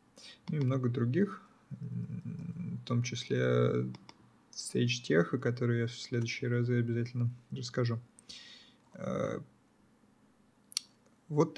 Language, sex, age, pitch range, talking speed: Russian, male, 20-39, 120-145 Hz, 90 wpm